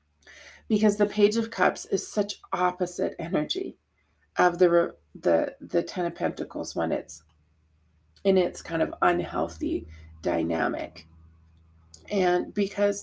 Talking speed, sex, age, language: 120 wpm, female, 30-49, English